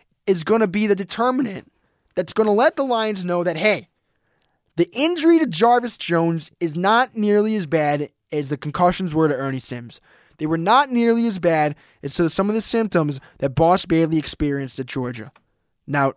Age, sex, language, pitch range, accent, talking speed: 20-39, male, English, 130-185 Hz, American, 190 wpm